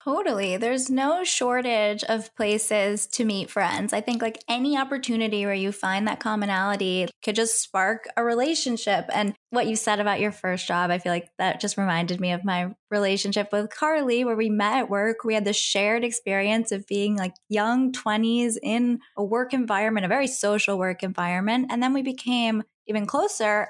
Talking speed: 185 wpm